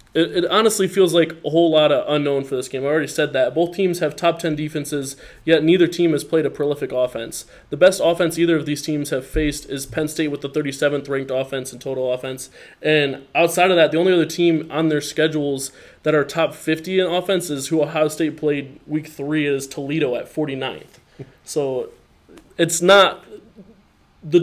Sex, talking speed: male, 200 wpm